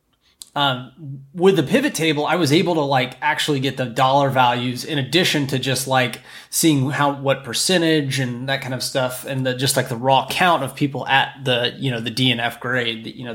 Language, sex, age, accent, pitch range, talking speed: English, male, 20-39, American, 125-150 Hz, 215 wpm